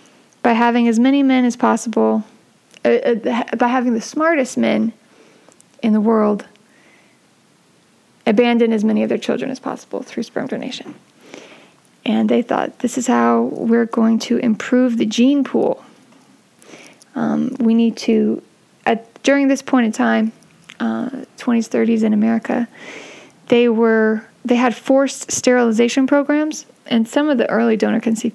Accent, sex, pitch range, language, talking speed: American, female, 225-260 Hz, English, 140 wpm